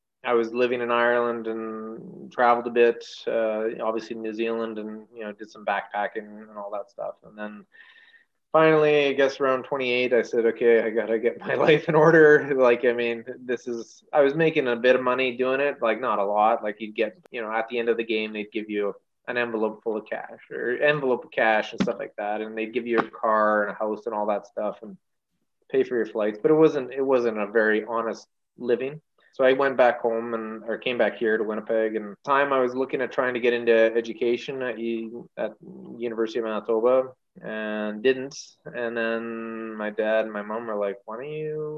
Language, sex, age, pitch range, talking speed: English, male, 20-39, 110-130 Hz, 230 wpm